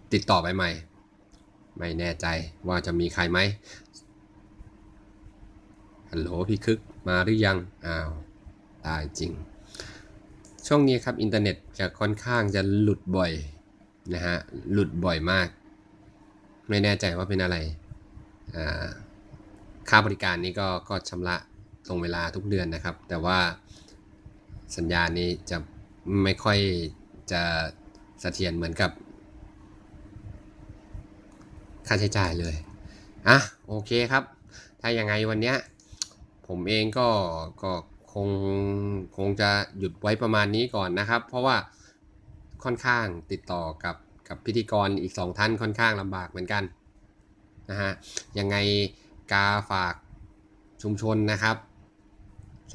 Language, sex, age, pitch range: Thai, male, 20-39, 90-105 Hz